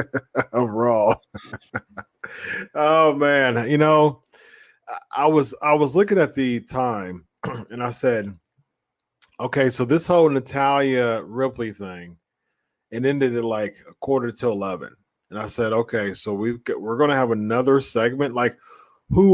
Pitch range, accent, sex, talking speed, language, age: 115-145 Hz, American, male, 140 wpm, English, 30-49